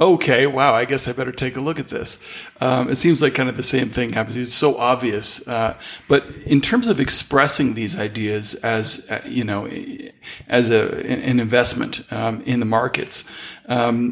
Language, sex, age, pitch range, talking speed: English, male, 40-59, 120-135 Hz, 190 wpm